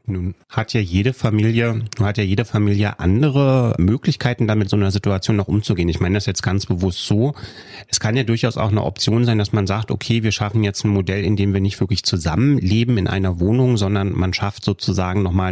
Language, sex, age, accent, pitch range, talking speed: German, male, 30-49, German, 100-120 Hz, 215 wpm